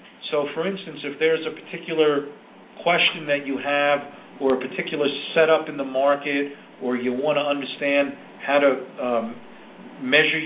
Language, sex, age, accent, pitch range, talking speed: English, male, 40-59, American, 135-165 Hz, 155 wpm